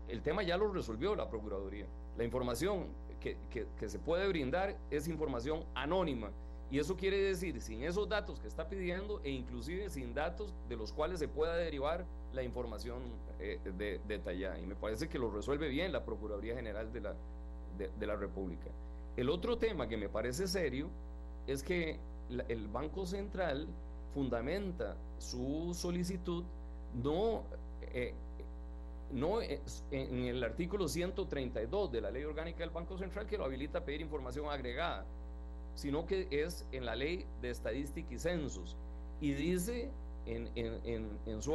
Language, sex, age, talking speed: Spanish, male, 40-59, 155 wpm